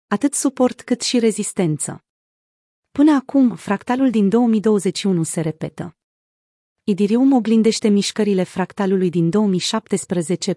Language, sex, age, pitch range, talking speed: Romanian, female, 30-49, 180-225 Hz, 100 wpm